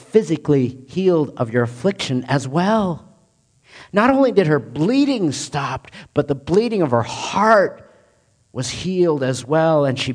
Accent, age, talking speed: American, 50-69, 150 wpm